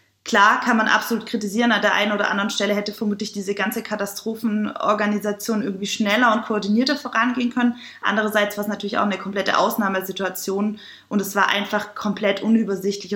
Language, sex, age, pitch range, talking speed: German, female, 20-39, 195-220 Hz, 165 wpm